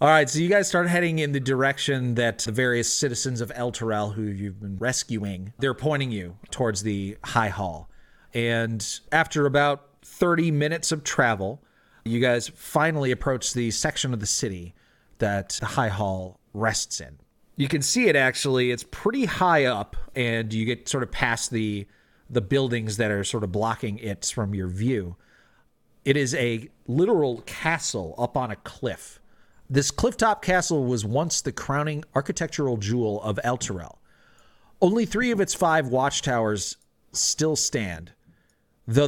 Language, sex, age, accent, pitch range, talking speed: English, male, 40-59, American, 110-145 Hz, 165 wpm